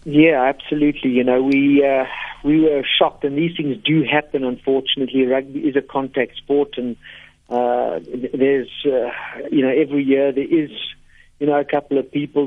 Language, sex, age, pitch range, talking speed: English, male, 60-79, 130-150 Hz, 175 wpm